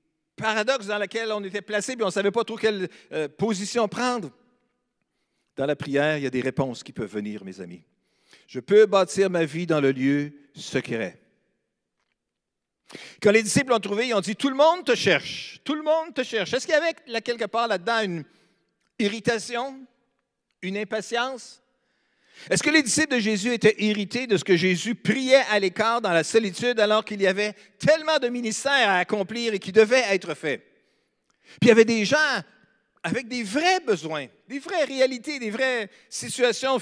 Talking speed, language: 185 wpm, French